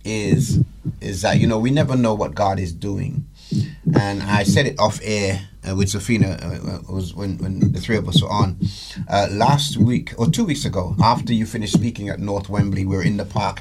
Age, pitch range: 30-49, 100-120 Hz